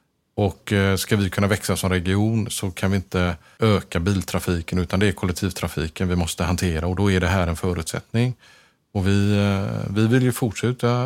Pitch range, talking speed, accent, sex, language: 95-110 Hz, 180 wpm, Norwegian, male, Swedish